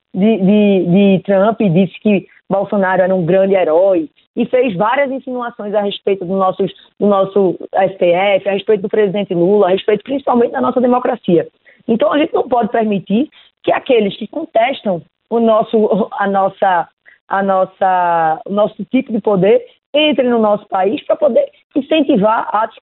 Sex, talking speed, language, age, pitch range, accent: female, 145 wpm, Portuguese, 20-39, 195-240 Hz, Brazilian